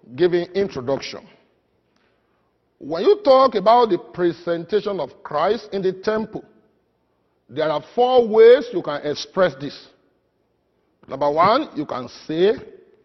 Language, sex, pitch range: English, male, 170-240 Hz